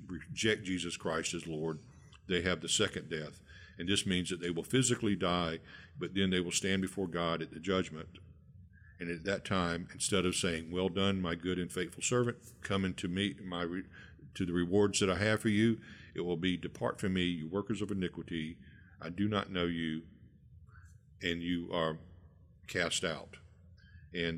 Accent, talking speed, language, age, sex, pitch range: American, 185 wpm, English, 50-69, male, 85-100 Hz